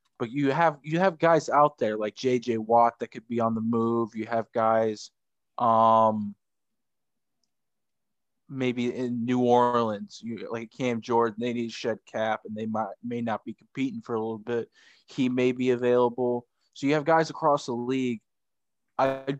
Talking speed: 175 wpm